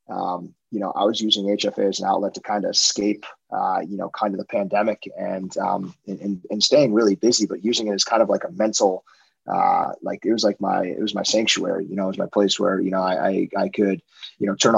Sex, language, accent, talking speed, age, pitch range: male, English, American, 255 wpm, 20-39, 95-105 Hz